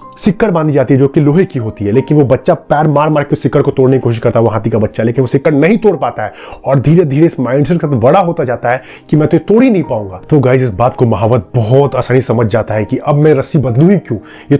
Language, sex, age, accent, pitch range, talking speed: Hindi, male, 30-49, native, 130-165 Hz, 295 wpm